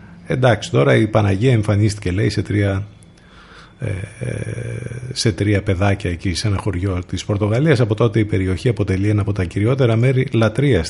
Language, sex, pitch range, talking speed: Greek, male, 95-120 Hz, 160 wpm